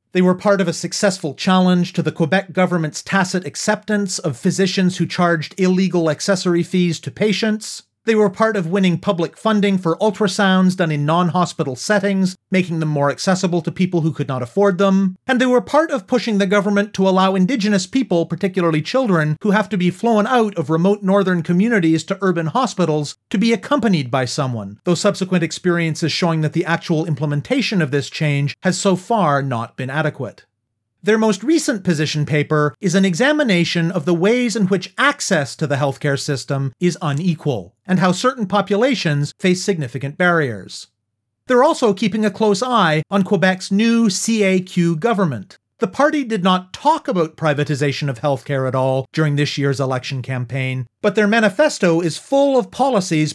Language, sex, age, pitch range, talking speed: English, male, 40-59, 155-205 Hz, 175 wpm